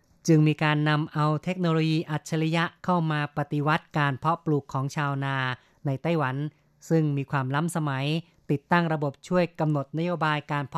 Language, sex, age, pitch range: Thai, female, 30-49, 140-160 Hz